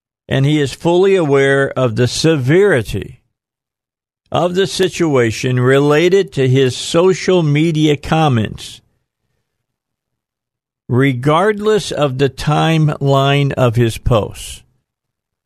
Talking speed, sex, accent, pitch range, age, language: 95 wpm, male, American, 120-150 Hz, 50-69, English